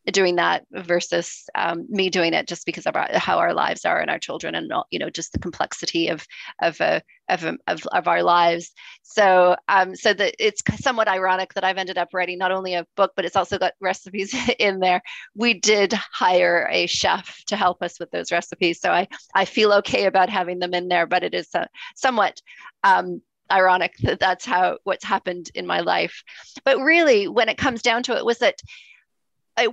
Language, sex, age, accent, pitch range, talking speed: English, female, 30-49, American, 180-220 Hz, 205 wpm